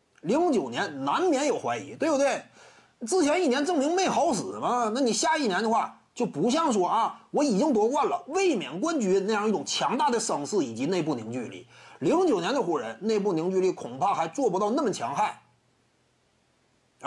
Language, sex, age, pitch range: Chinese, male, 30-49, 195-285 Hz